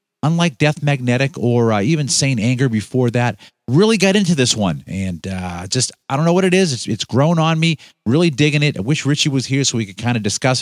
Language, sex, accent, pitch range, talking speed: English, male, American, 115-150 Hz, 245 wpm